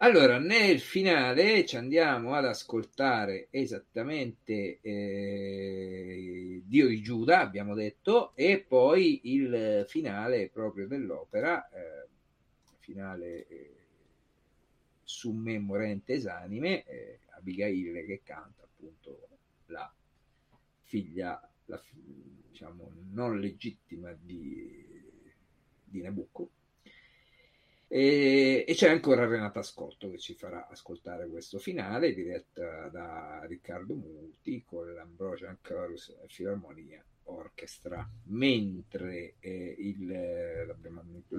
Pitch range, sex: 95-135 Hz, male